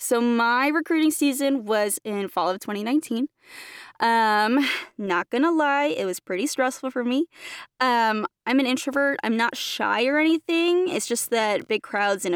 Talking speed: 165 wpm